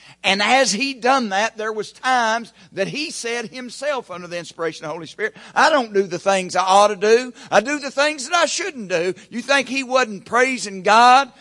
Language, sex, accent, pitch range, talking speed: English, male, American, 145-240 Hz, 220 wpm